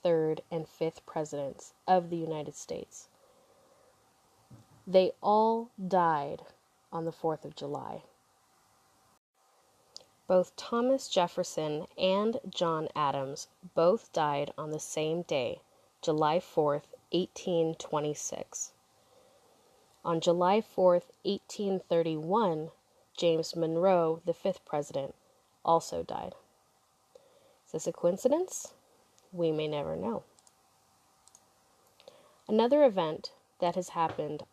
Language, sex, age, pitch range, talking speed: English, female, 20-39, 155-195 Hz, 95 wpm